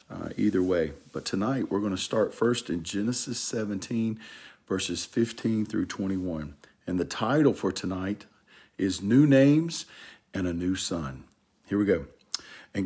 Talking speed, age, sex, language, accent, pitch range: 155 wpm, 50-69, male, English, American, 85-120 Hz